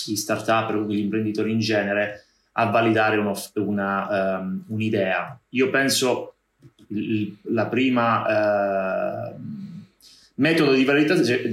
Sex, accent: male, native